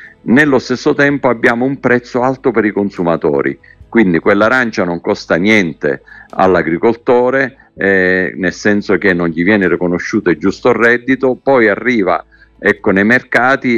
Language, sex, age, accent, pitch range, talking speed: Italian, male, 50-69, native, 95-130 Hz, 130 wpm